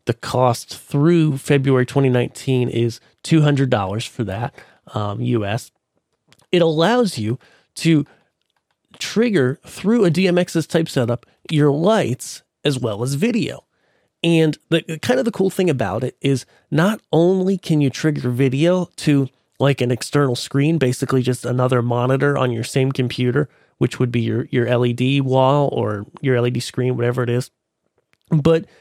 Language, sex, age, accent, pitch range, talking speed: English, male, 30-49, American, 130-165 Hz, 150 wpm